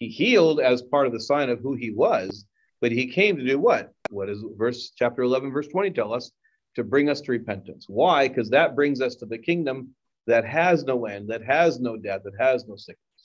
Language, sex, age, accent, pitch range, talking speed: English, male, 40-59, American, 115-140 Hz, 225 wpm